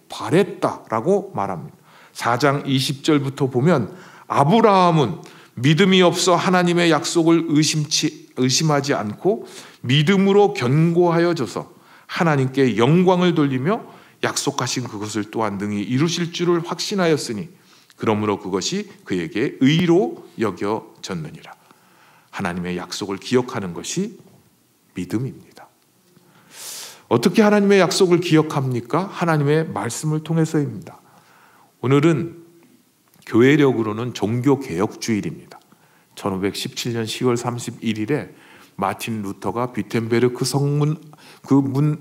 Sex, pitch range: male, 125-175 Hz